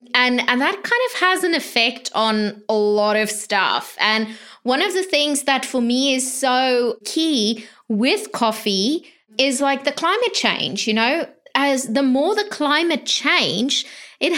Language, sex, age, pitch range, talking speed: English, female, 20-39, 220-285 Hz, 165 wpm